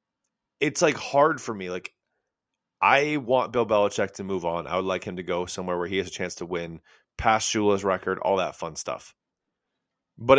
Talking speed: 200 wpm